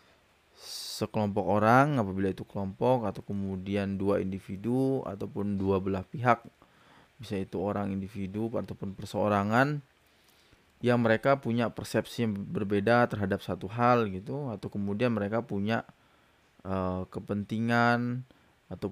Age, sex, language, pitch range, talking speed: 20-39, male, Indonesian, 100-120 Hz, 110 wpm